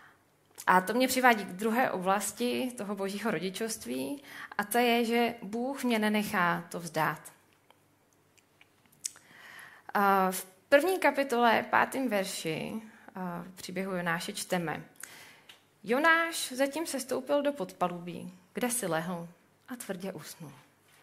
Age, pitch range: 20-39, 175-245 Hz